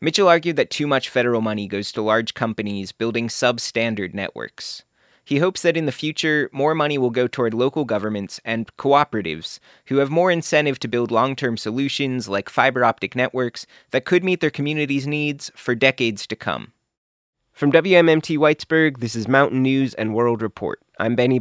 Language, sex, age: English, male, 20-39